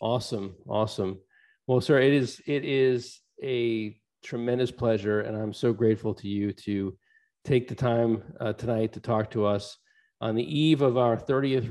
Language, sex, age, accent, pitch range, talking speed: English, male, 40-59, American, 110-125 Hz, 170 wpm